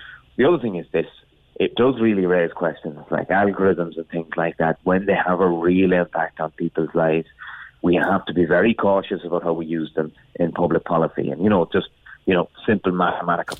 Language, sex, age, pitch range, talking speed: English, male, 30-49, 85-95 Hz, 205 wpm